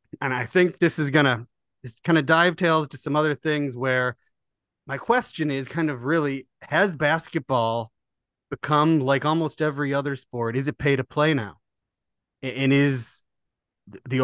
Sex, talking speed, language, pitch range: male, 165 wpm, English, 120-150 Hz